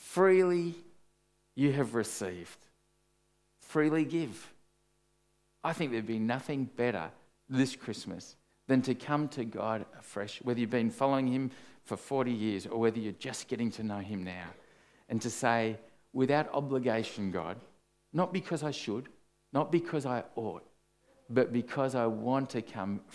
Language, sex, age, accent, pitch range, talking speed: English, male, 50-69, Australian, 105-135 Hz, 150 wpm